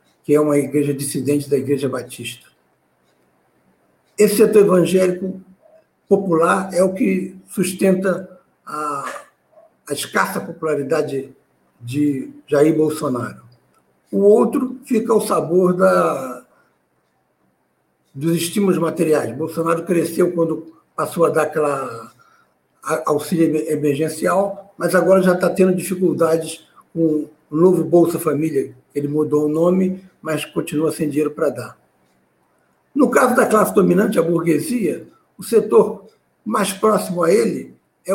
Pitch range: 150-190 Hz